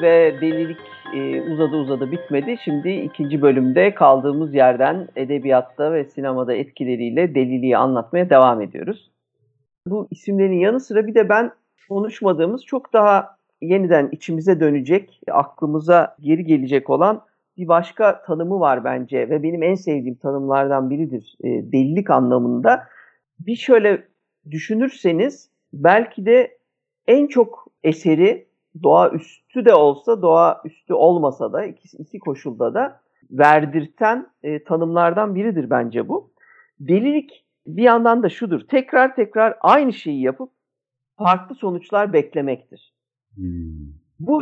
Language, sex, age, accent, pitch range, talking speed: Turkish, male, 50-69, native, 140-220 Hz, 120 wpm